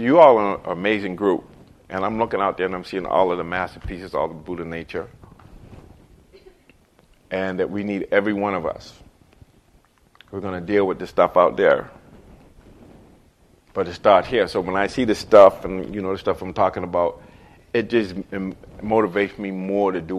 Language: English